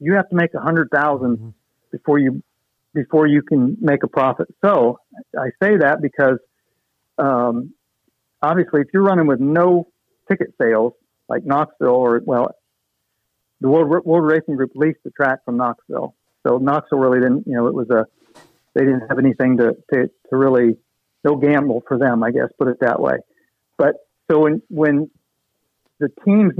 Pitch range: 130-155 Hz